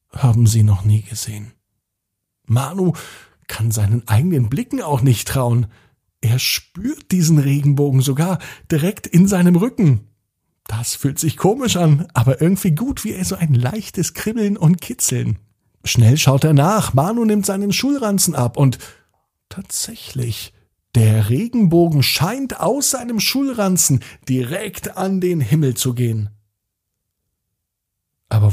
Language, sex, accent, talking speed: German, male, German, 130 wpm